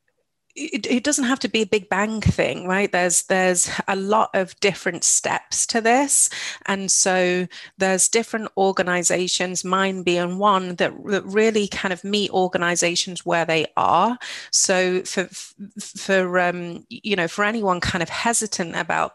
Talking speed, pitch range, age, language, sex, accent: 155 wpm, 170-200 Hz, 30-49, English, female, British